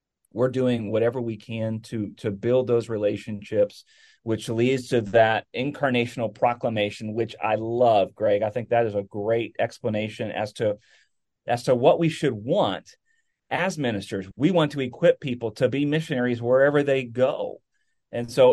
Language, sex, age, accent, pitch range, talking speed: English, male, 30-49, American, 115-140 Hz, 160 wpm